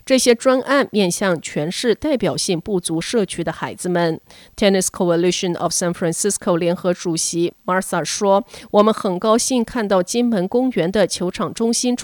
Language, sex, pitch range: Chinese, female, 170-230 Hz